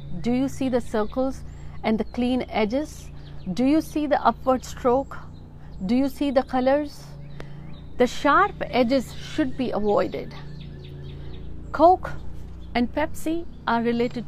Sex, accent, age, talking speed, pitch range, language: female, native, 50-69, 130 wpm, 190-265 Hz, Hindi